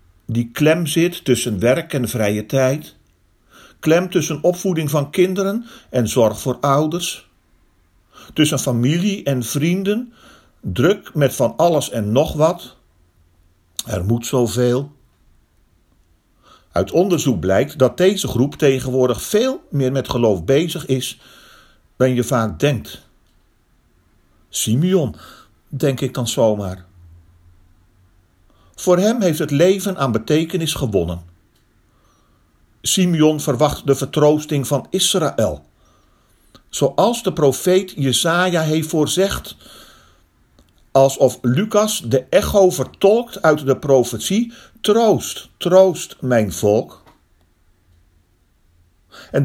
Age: 50-69